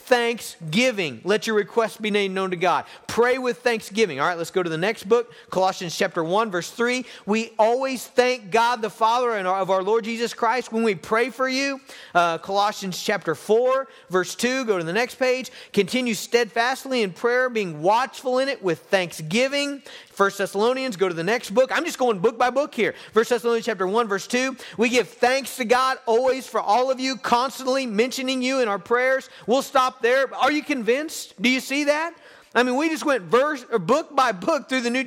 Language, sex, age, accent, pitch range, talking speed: English, male, 40-59, American, 185-255 Hz, 210 wpm